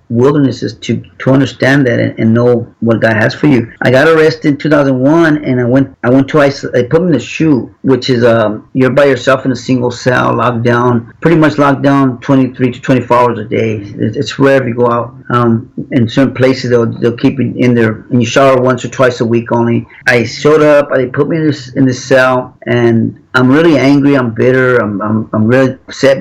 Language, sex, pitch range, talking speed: English, male, 120-135 Hz, 230 wpm